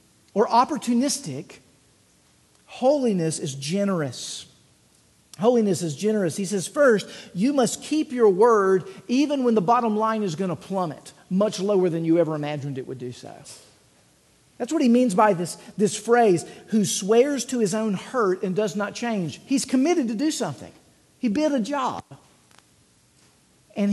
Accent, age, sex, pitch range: American, 50-69, male, 155-230 Hz